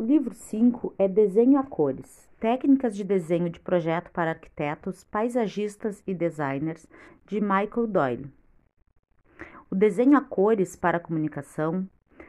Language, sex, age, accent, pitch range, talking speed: Portuguese, female, 40-59, Brazilian, 165-210 Hz, 125 wpm